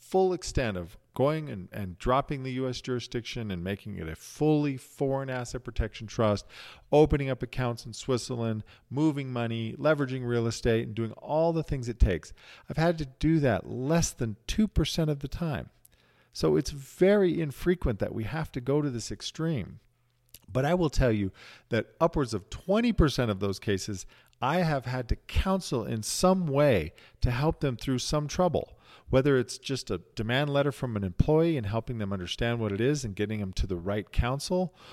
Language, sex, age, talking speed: English, male, 40-59, 185 wpm